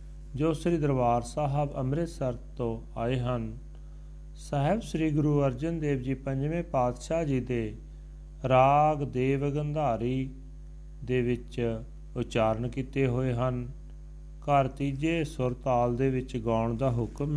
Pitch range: 120-150 Hz